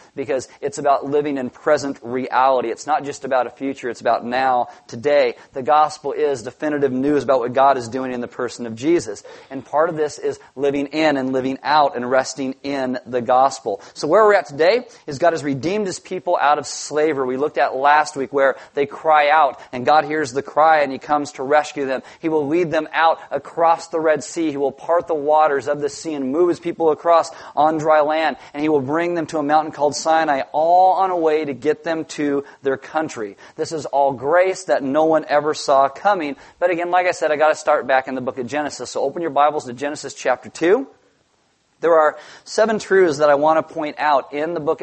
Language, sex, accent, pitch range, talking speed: English, male, American, 135-160 Hz, 230 wpm